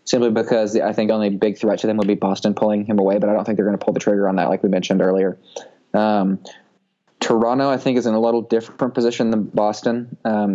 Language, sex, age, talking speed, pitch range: English, male, 20-39, 255 wpm, 105-110 Hz